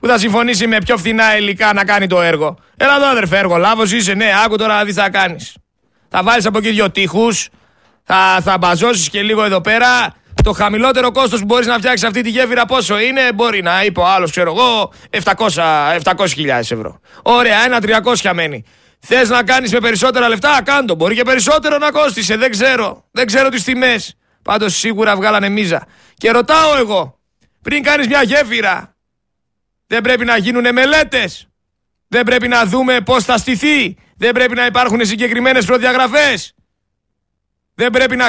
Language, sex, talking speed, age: Greek, male, 175 wpm, 30-49